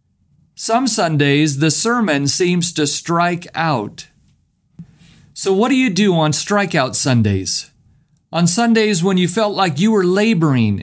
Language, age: English, 40-59